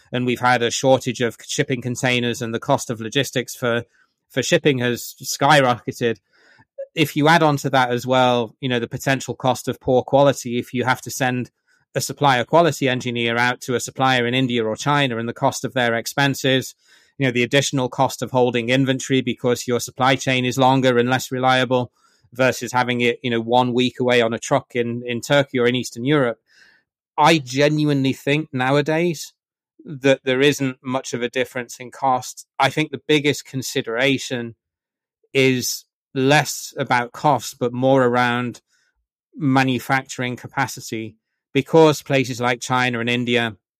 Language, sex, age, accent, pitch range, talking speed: English, male, 30-49, British, 120-135 Hz, 170 wpm